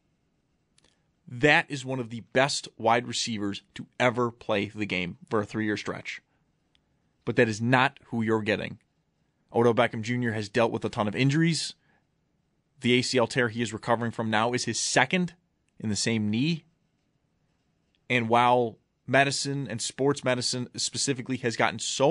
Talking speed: 165 wpm